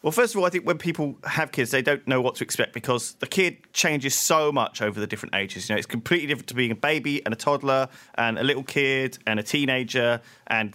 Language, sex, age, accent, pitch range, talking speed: English, male, 30-49, British, 125-150 Hz, 255 wpm